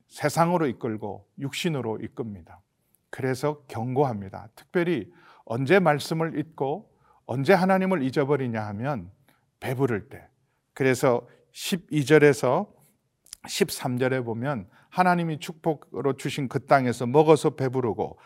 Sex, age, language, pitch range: male, 40-59, Korean, 125-165 Hz